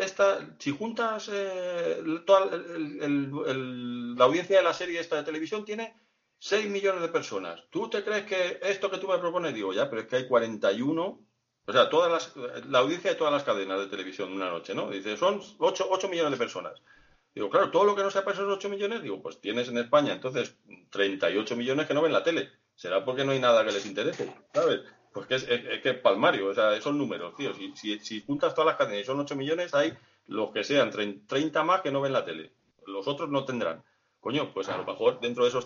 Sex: male